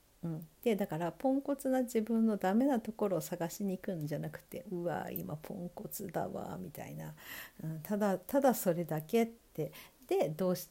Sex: female